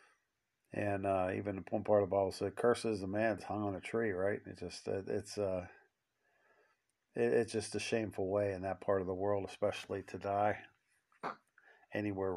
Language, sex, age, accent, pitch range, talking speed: English, male, 50-69, American, 95-120 Hz, 190 wpm